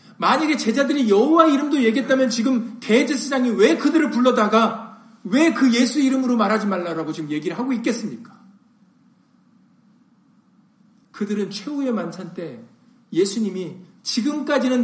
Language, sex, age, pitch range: Korean, male, 40-59, 190-240 Hz